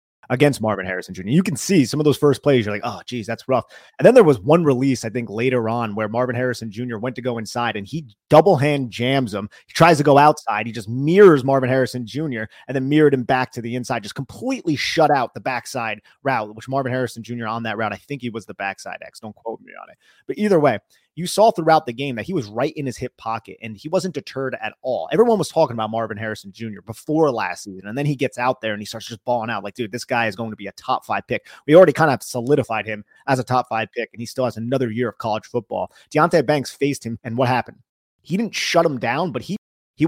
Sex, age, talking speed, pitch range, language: male, 30-49, 265 wpm, 115-140 Hz, English